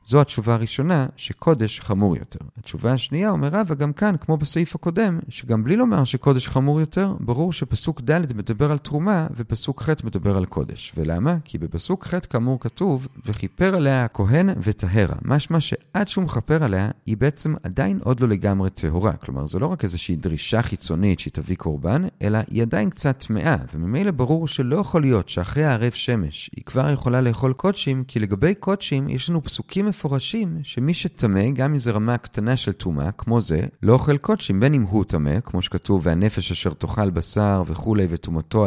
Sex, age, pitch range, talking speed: male, 40-59, 100-150 Hz, 165 wpm